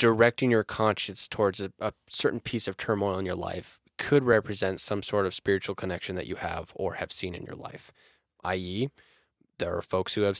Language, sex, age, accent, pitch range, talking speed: English, male, 10-29, American, 100-120 Hz, 200 wpm